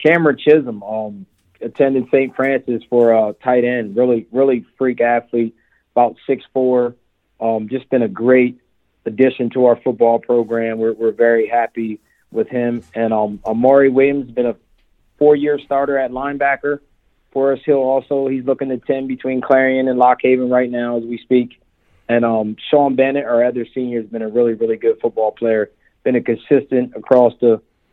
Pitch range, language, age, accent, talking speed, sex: 115-130 Hz, English, 40-59, American, 175 wpm, male